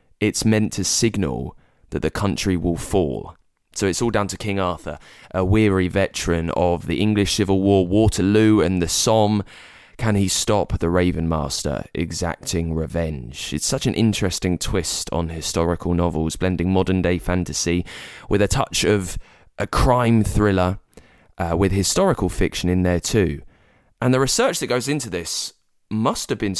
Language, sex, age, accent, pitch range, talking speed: English, male, 20-39, British, 90-110 Hz, 160 wpm